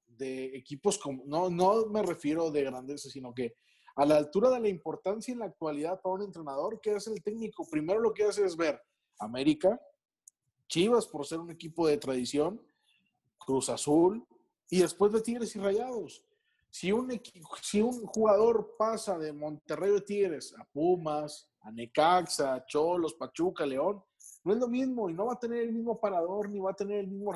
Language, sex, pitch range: Spanish, male, 155-225 Hz